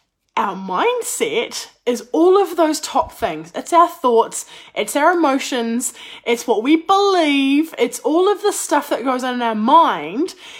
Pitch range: 240-385 Hz